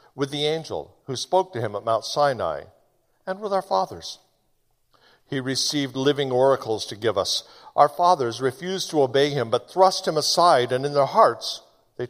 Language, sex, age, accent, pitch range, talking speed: English, male, 60-79, American, 115-150 Hz, 180 wpm